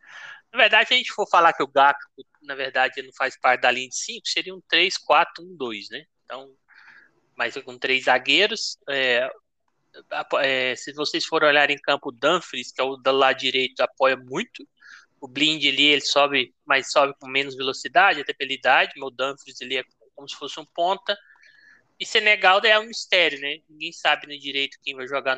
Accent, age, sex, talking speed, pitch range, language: Brazilian, 20-39, male, 200 wpm, 130-155 Hz, Portuguese